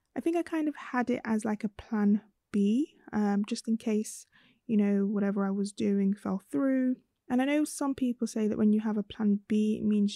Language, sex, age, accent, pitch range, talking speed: English, female, 20-39, British, 210-240 Hz, 230 wpm